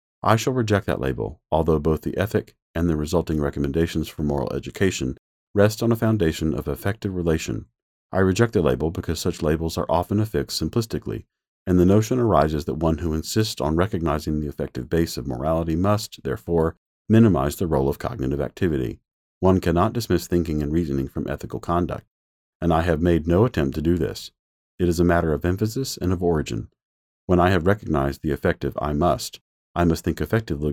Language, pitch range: English, 75-95 Hz